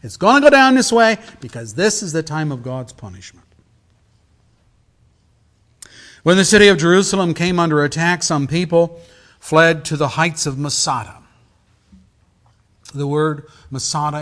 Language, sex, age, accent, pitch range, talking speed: English, male, 50-69, American, 115-180 Hz, 145 wpm